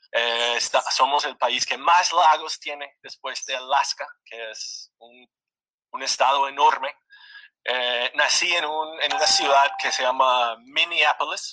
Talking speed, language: 150 wpm, Spanish